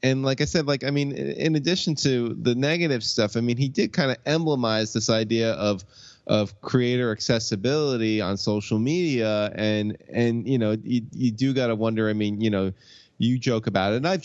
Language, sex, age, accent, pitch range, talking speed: English, male, 20-39, American, 100-120 Hz, 205 wpm